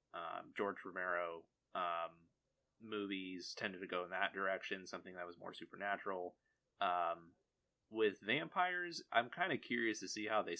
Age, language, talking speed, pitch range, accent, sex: 30-49, English, 155 wpm, 90-110 Hz, American, male